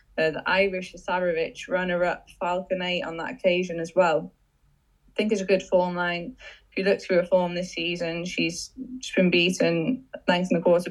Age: 10-29